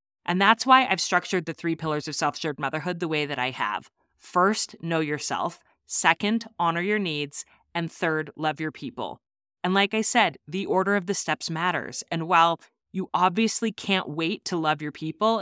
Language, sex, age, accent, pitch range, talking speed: English, female, 30-49, American, 155-195 Hz, 185 wpm